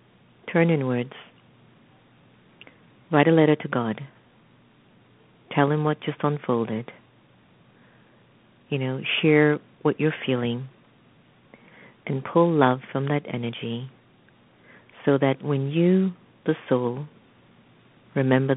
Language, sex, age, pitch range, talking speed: English, female, 50-69, 125-145 Hz, 100 wpm